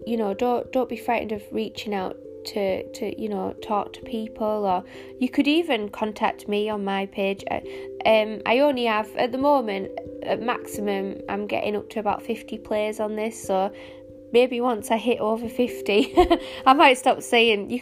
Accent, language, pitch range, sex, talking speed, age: British, English, 200-240 Hz, female, 185 wpm, 20-39